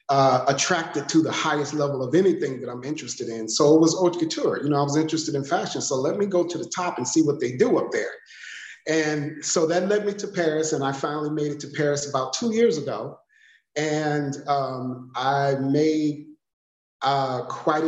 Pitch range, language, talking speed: 135-170 Hz, English, 210 wpm